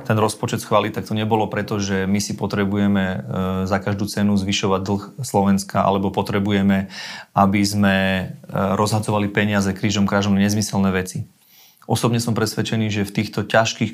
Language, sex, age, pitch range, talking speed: Slovak, male, 30-49, 100-110 Hz, 150 wpm